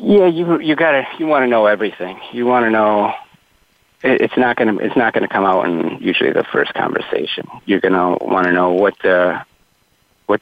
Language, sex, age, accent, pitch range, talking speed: English, male, 30-49, American, 90-105 Hz, 200 wpm